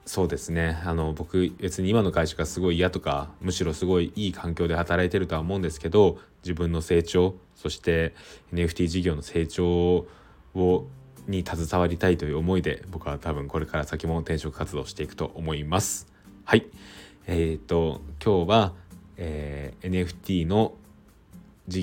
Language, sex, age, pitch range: Japanese, male, 20-39, 80-95 Hz